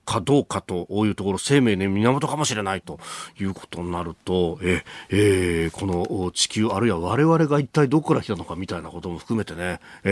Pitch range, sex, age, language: 95-145 Hz, male, 40-59, Japanese